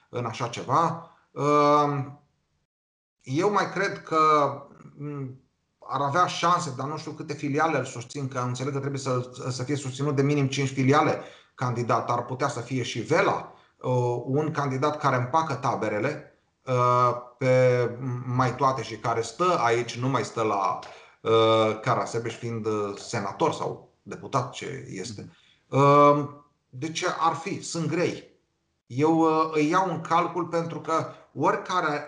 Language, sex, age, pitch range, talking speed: Romanian, male, 30-49, 130-165 Hz, 140 wpm